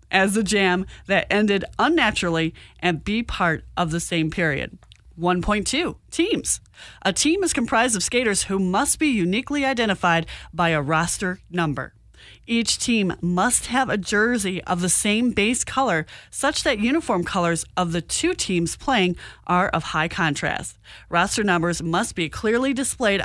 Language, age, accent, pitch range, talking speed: English, 30-49, American, 180-245 Hz, 155 wpm